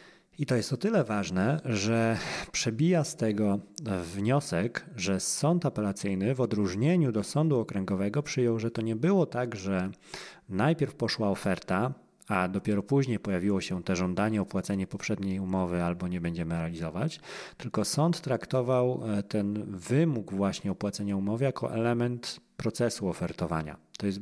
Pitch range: 100-155 Hz